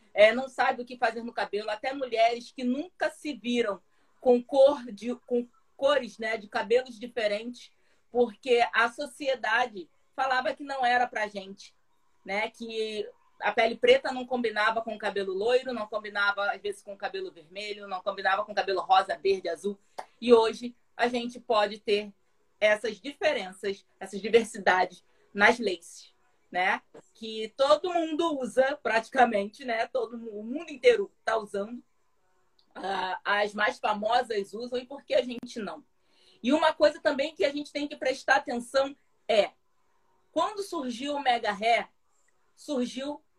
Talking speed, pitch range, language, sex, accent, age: 160 wpm, 215-275 Hz, Portuguese, female, Brazilian, 20-39